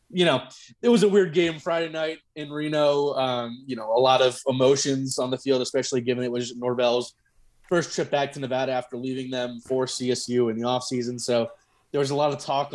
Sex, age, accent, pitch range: male, 20-39, American, 120-140 Hz